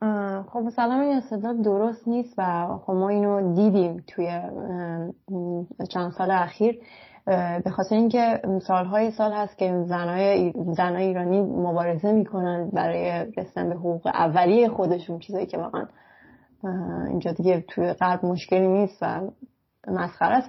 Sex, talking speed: female, 140 wpm